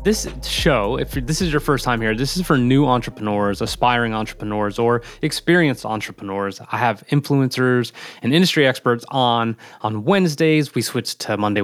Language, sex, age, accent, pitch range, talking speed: English, male, 20-39, American, 110-130 Hz, 165 wpm